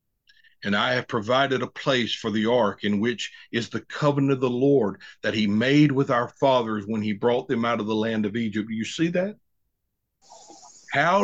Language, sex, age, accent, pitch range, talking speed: English, male, 50-69, American, 115-155 Hz, 200 wpm